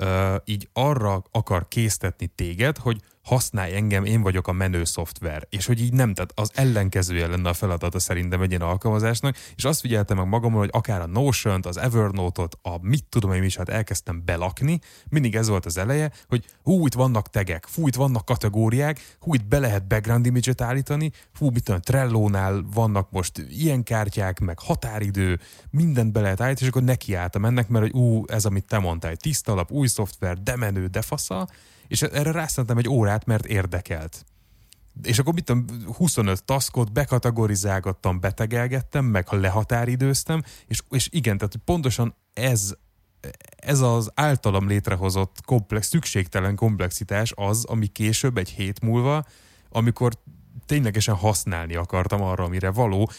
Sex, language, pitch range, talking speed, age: male, Hungarian, 95-125 Hz, 160 wpm, 30-49